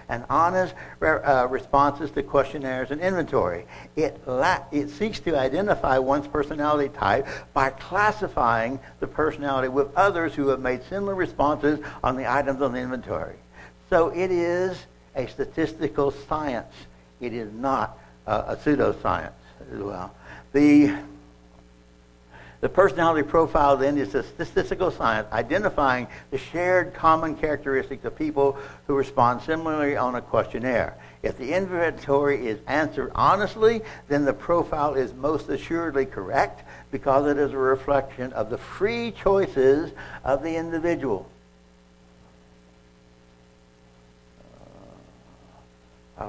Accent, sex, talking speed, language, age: American, male, 120 wpm, English, 60-79